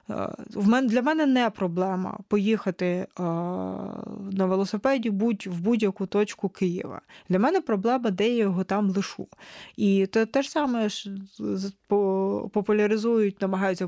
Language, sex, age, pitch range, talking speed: Ukrainian, female, 20-39, 190-245 Hz, 115 wpm